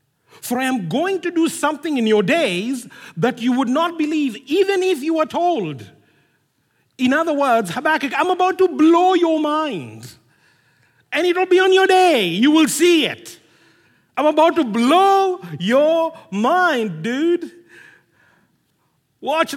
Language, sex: English, male